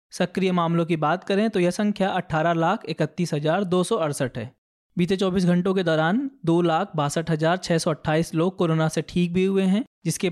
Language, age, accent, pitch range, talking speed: Hindi, 20-39, native, 170-205 Hz, 180 wpm